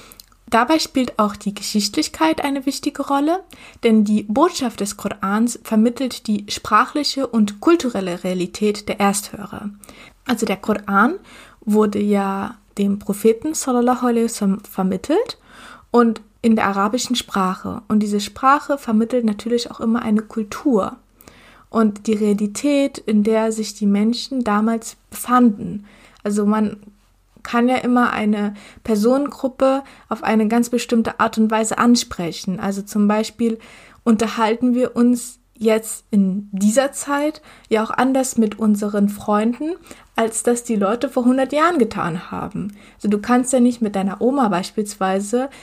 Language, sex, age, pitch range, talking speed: German, female, 20-39, 210-245 Hz, 140 wpm